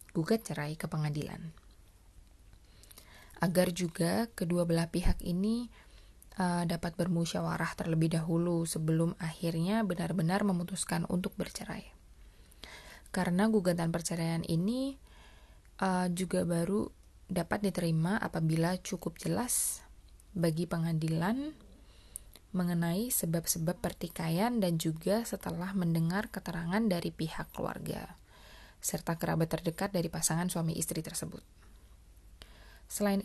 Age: 20-39